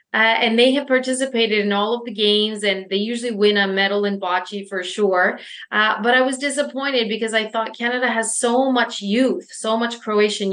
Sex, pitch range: female, 185-215 Hz